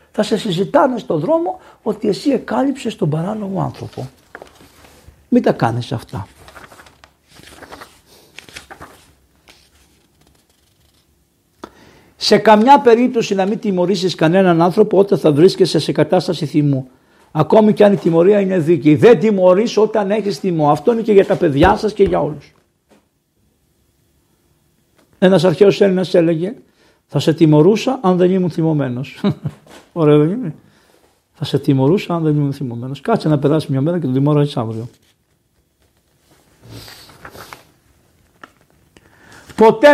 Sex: male